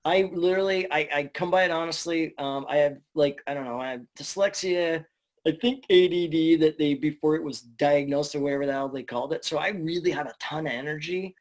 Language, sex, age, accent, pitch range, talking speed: English, male, 20-39, American, 140-165 Hz, 220 wpm